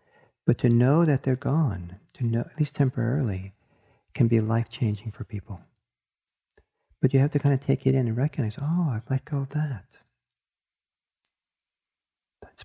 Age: 50-69